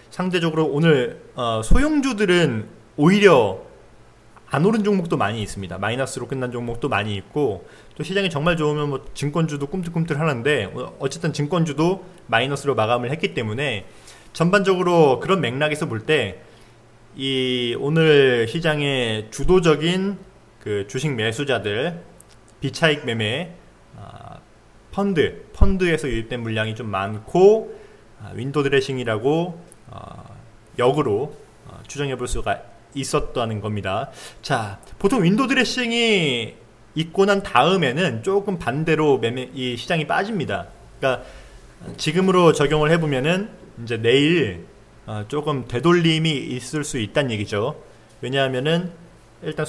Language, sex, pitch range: Korean, male, 115-170 Hz